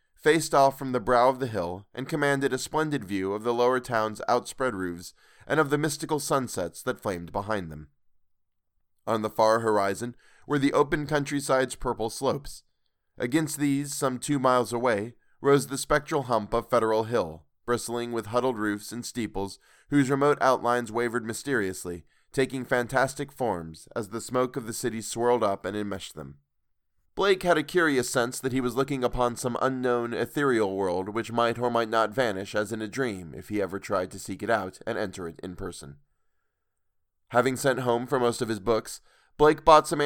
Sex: male